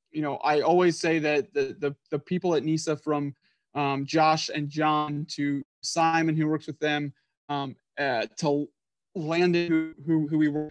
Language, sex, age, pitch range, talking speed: English, male, 20-39, 145-170 Hz, 175 wpm